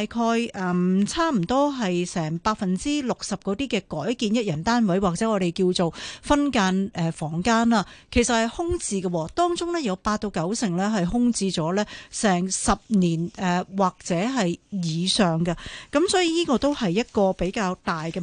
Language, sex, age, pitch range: Chinese, female, 40-59, 180-245 Hz